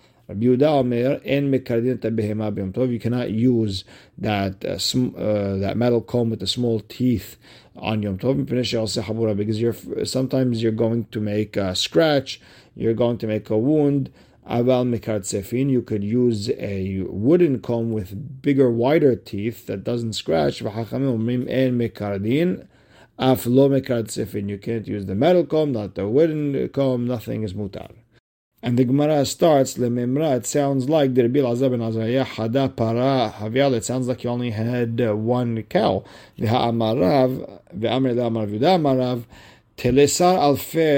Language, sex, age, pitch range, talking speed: English, male, 50-69, 110-135 Hz, 110 wpm